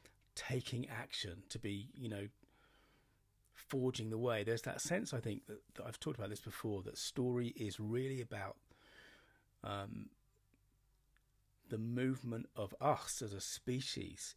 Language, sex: English, male